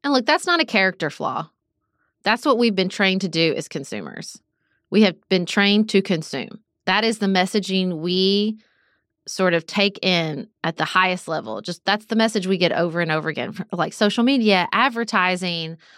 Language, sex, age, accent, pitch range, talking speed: English, female, 30-49, American, 175-225 Hz, 185 wpm